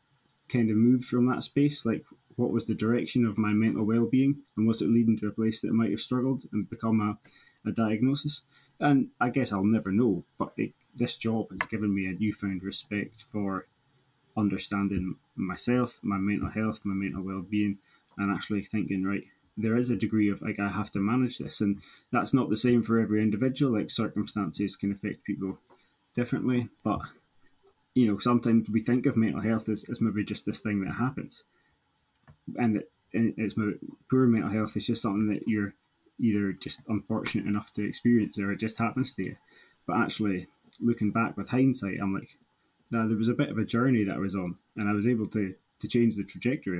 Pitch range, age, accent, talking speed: 100-120 Hz, 20-39, British, 200 wpm